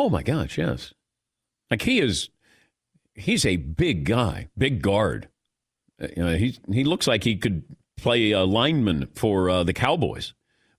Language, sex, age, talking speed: English, male, 50-69, 160 wpm